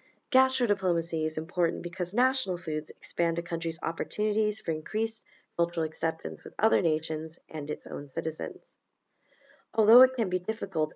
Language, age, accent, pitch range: English, 20-39, American, 165-215 Hz